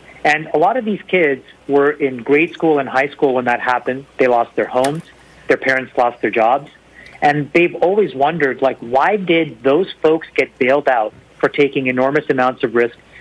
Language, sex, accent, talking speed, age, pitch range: English, male, American, 195 wpm, 40-59, 135-160 Hz